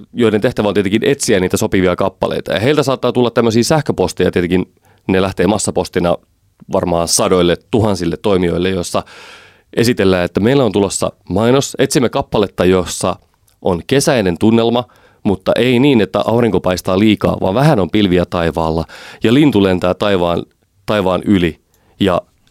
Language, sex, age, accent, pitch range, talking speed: Finnish, male, 30-49, native, 90-120 Hz, 145 wpm